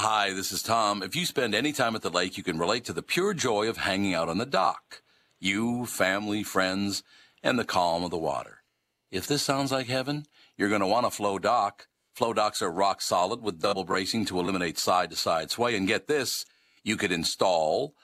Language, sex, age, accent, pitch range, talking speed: English, male, 50-69, American, 95-120 Hz, 215 wpm